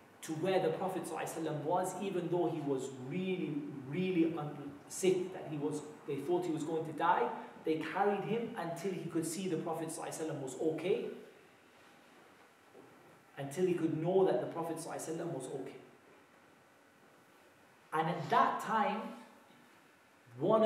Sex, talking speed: male, 135 wpm